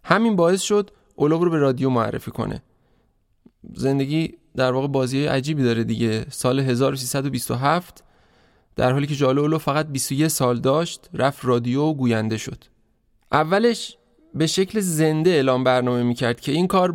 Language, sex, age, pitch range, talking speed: Persian, male, 20-39, 125-155 Hz, 145 wpm